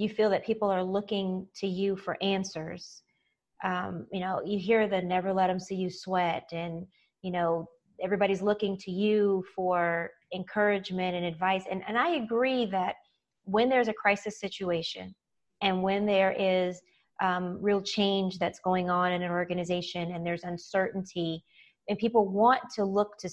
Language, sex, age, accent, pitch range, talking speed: English, female, 30-49, American, 180-205 Hz, 165 wpm